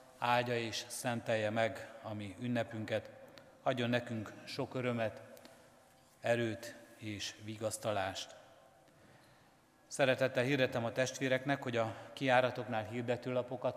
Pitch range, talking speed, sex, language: 110-125 Hz, 95 wpm, male, Hungarian